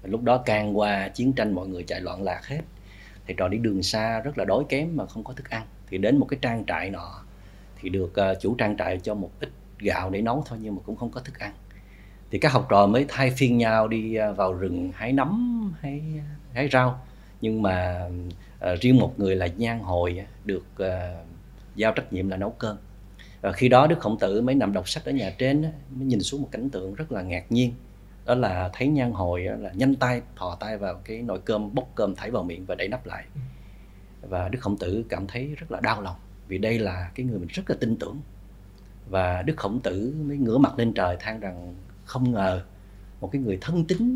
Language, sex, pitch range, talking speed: Vietnamese, male, 95-125 Hz, 225 wpm